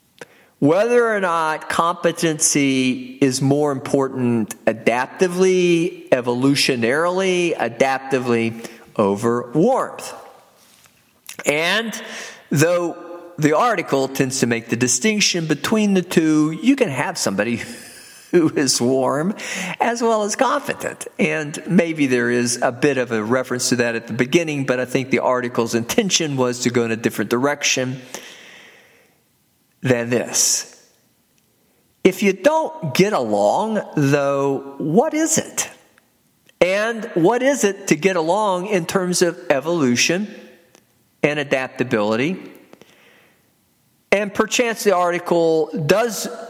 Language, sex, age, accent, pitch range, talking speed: English, male, 50-69, American, 125-185 Hz, 115 wpm